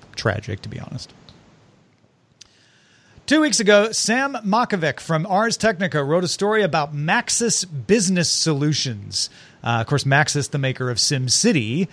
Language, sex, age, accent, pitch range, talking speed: English, male, 40-59, American, 135-190 Hz, 135 wpm